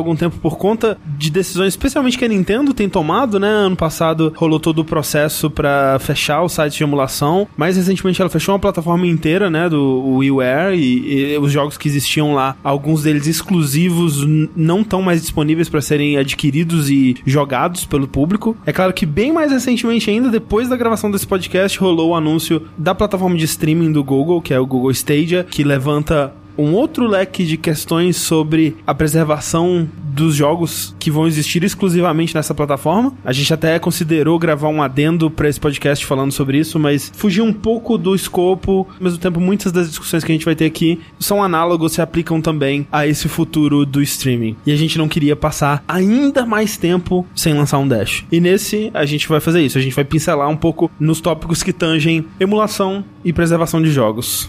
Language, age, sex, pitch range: Portuguese, 20-39, male, 150-185 Hz